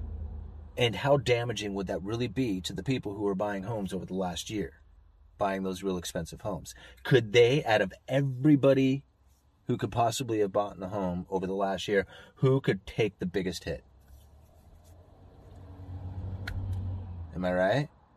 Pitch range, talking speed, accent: 80-105 Hz, 160 wpm, American